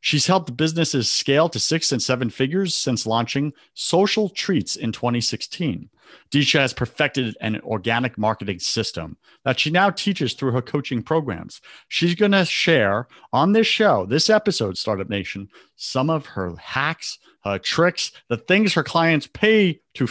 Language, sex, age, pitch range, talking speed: English, male, 50-69, 125-175 Hz, 160 wpm